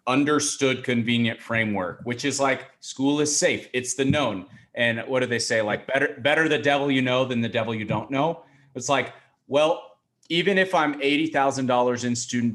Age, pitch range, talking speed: 30-49, 110-140 Hz, 195 wpm